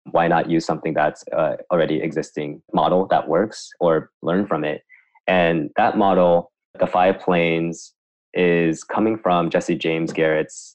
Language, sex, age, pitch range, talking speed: English, male, 20-39, 80-95 Hz, 150 wpm